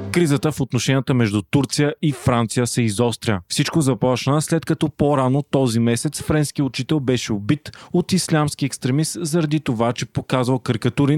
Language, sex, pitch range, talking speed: Bulgarian, male, 120-145 Hz, 150 wpm